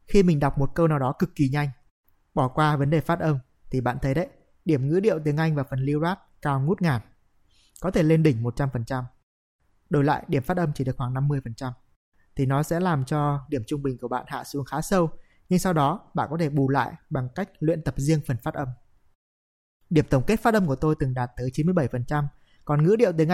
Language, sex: Vietnamese, male